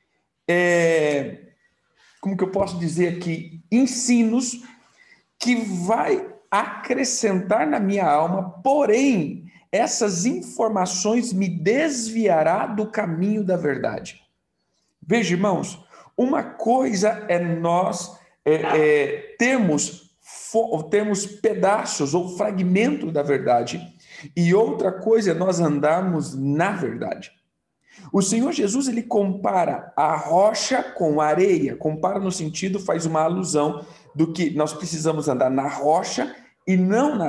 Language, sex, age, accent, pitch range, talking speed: Portuguese, male, 50-69, Brazilian, 160-225 Hz, 115 wpm